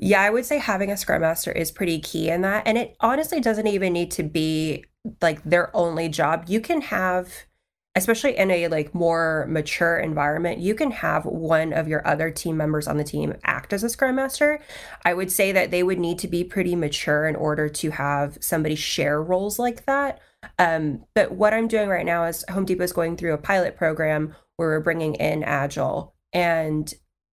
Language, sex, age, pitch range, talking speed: English, female, 20-39, 155-200 Hz, 205 wpm